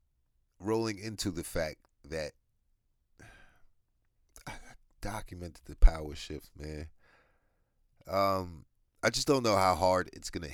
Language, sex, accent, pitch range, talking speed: English, male, American, 75-100 Hz, 115 wpm